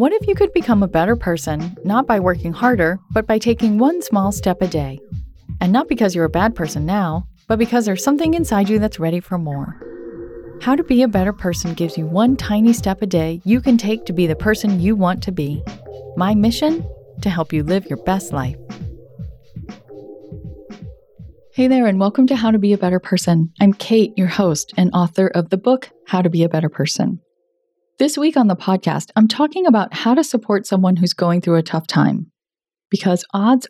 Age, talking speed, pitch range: 30-49, 210 wpm, 165-220 Hz